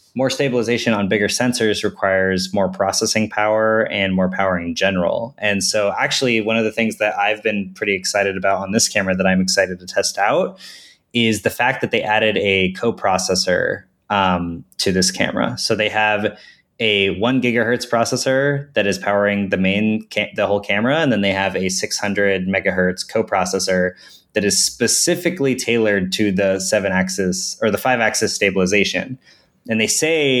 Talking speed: 175 wpm